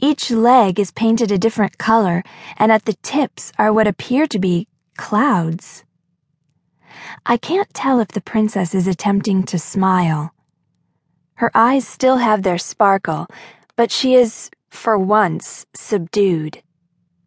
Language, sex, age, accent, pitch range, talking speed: English, female, 20-39, American, 175-225 Hz, 135 wpm